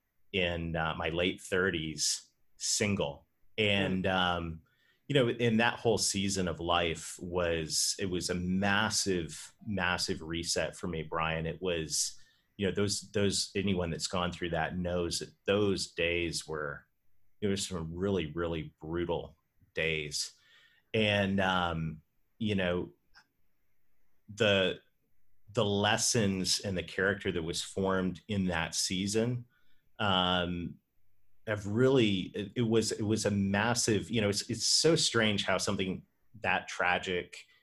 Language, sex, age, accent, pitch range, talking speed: English, male, 30-49, American, 85-105 Hz, 135 wpm